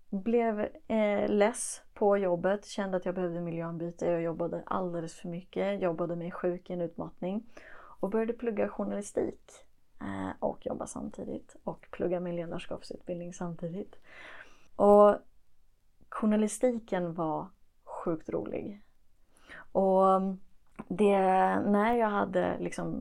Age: 30-49